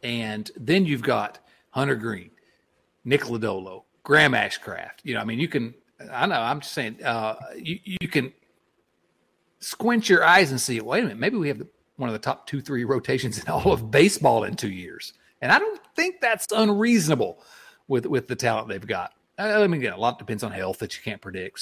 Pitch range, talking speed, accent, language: 110-160 Hz, 210 wpm, American, English